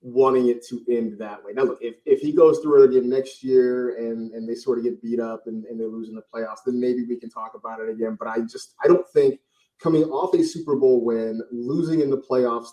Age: 30-49